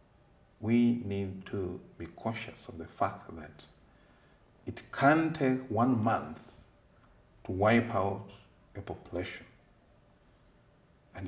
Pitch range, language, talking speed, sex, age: 85-115 Hz, English, 105 wpm, male, 50-69